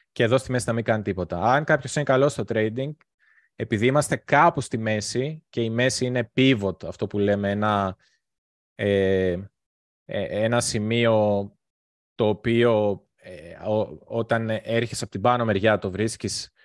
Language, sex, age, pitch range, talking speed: Greek, male, 20-39, 105-125 Hz, 150 wpm